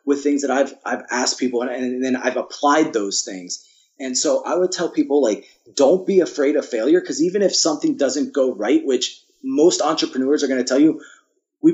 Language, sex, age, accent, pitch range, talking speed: English, male, 30-49, American, 130-200 Hz, 215 wpm